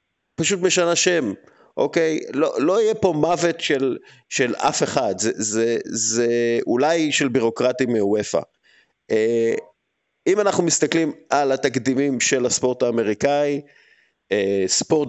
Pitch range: 115-165 Hz